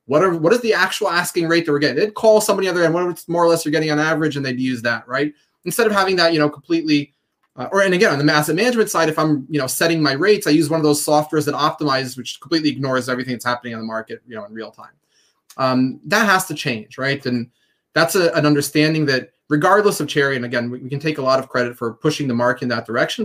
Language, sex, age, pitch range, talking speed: English, male, 20-39, 130-170 Hz, 275 wpm